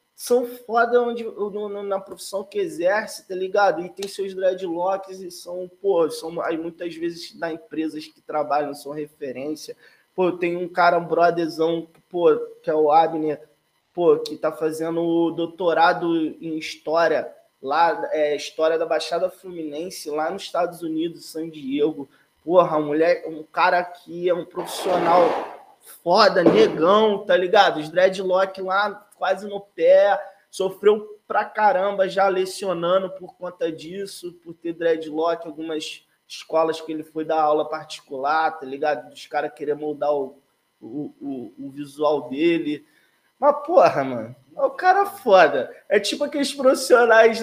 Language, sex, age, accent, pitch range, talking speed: Portuguese, male, 20-39, Brazilian, 160-210 Hz, 155 wpm